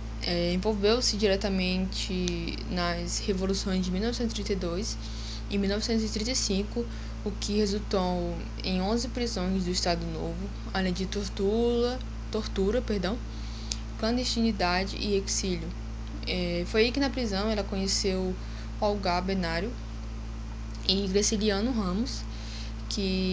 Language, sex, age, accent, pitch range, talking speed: Portuguese, female, 10-29, Brazilian, 175-215 Hz, 105 wpm